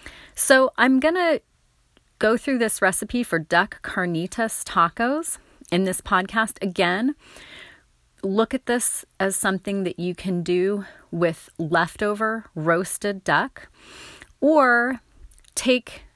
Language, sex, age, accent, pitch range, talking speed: English, female, 30-49, American, 155-220 Hz, 115 wpm